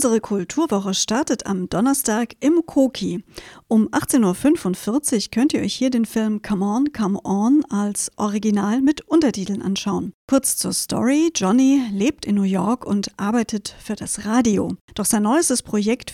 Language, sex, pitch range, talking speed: German, female, 205-265 Hz, 155 wpm